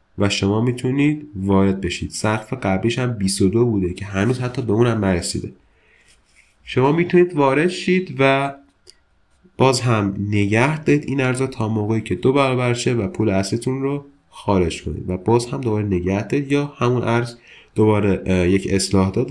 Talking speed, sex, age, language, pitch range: 160 wpm, male, 30-49, Persian, 95-120 Hz